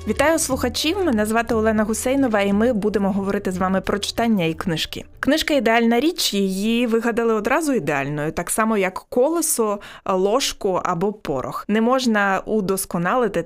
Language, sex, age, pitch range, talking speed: Ukrainian, female, 20-39, 180-225 Hz, 150 wpm